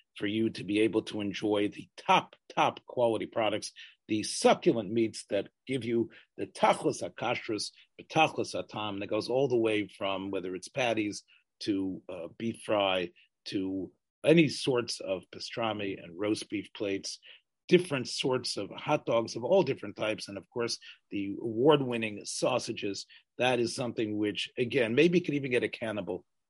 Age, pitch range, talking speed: 40-59, 105-165 Hz, 165 wpm